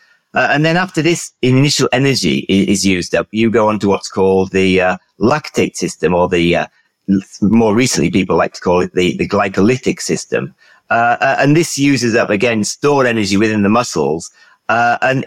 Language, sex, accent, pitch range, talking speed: English, male, British, 95-125 Hz, 195 wpm